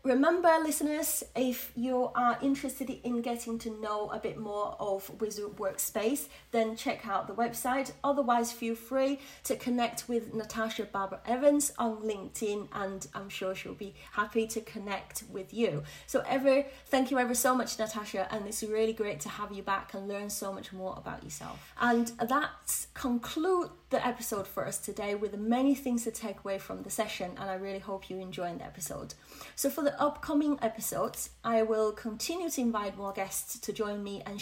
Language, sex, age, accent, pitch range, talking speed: English, female, 30-49, British, 200-250 Hz, 185 wpm